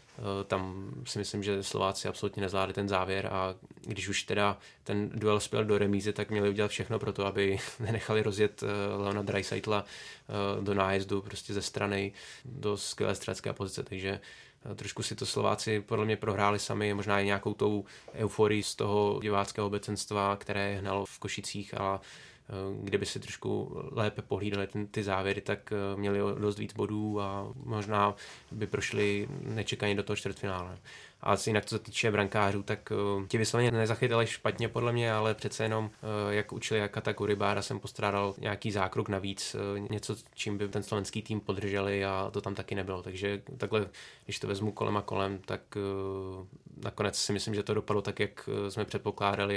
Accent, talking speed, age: native, 165 wpm, 20-39